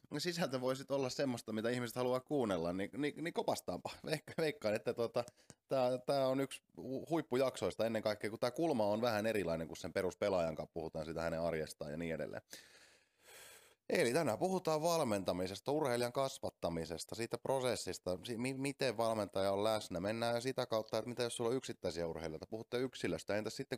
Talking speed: 160 wpm